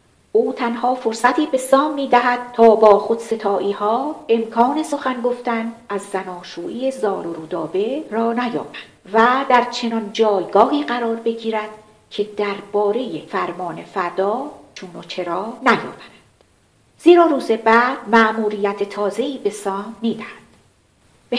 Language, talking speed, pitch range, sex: Persian, 125 wpm, 210-260 Hz, female